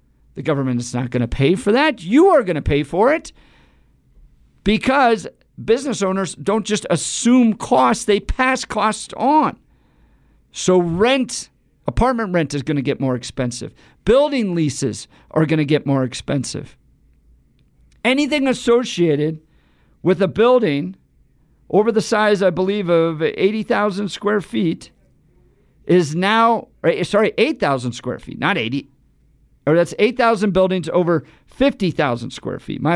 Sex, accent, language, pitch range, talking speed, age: male, American, English, 155-230 Hz, 140 wpm, 50-69